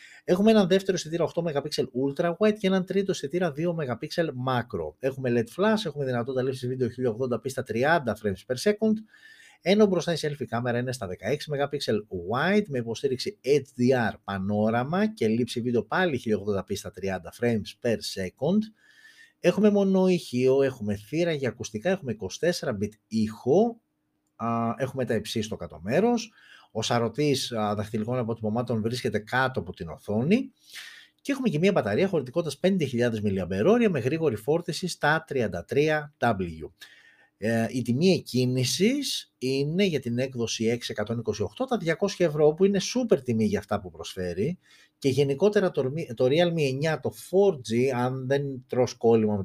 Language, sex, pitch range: Greek, male, 115-180 Hz